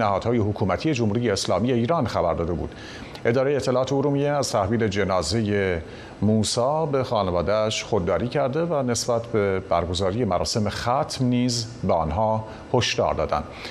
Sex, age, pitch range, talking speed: male, 50-69, 105-135 Hz, 130 wpm